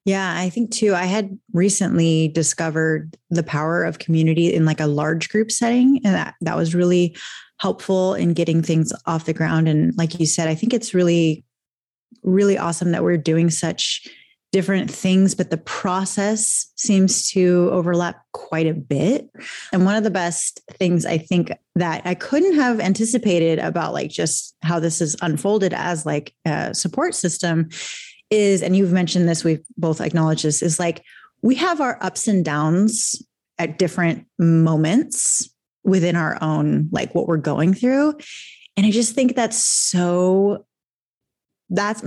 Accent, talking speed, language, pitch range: American, 165 wpm, English, 165-205 Hz